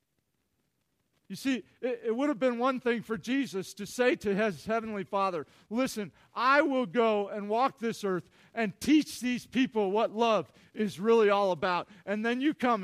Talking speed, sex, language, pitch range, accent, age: 180 wpm, male, English, 180-230 Hz, American, 50-69